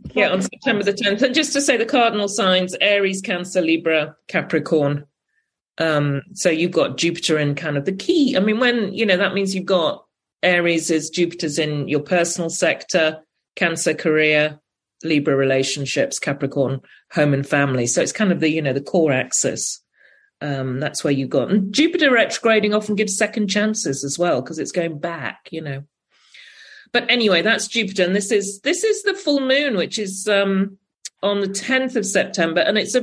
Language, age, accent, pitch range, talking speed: English, 40-59, British, 155-210 Hz, 185 wpm